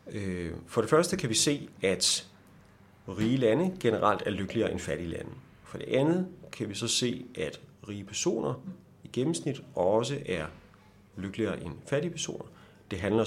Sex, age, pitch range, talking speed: male, 30-49, 95-125 Hz, 160 wpm